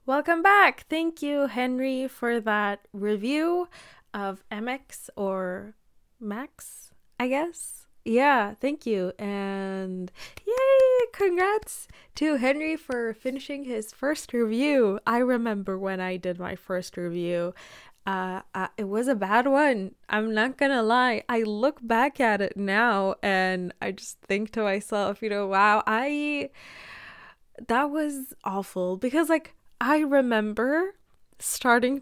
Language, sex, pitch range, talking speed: English, female, 200-275 Hz, 130 wpm